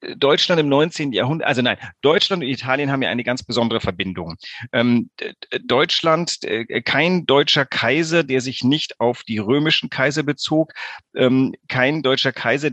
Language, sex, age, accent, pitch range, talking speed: German, male, 40-59, German, 120-150 Hz, 155 wpm